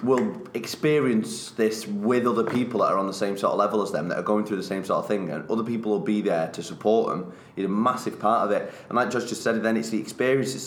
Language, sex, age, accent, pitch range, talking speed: English, male, 20-39, British, 100-135 Hz, 280 wpm